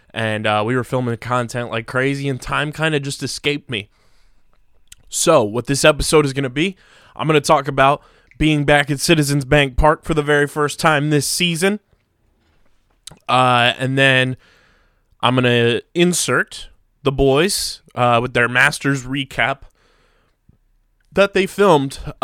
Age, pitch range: 20-39, 125-150 Hz